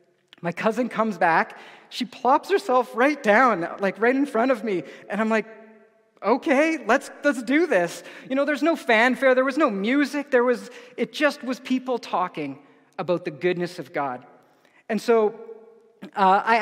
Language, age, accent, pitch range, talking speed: English, 30-49, American, 175-250 Hz, 175 wpm